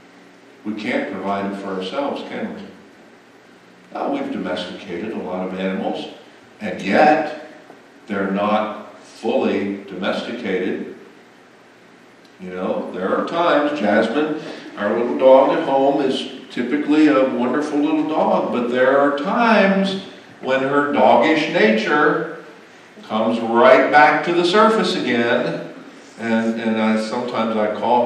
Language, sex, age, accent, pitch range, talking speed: English, male, 60-79, American, 120-190 Hz, 125 wpm